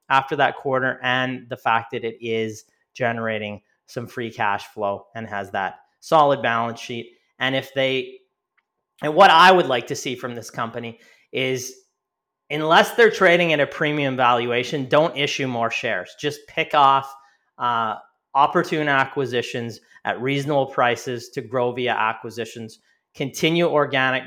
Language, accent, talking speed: English, American, 150 wpm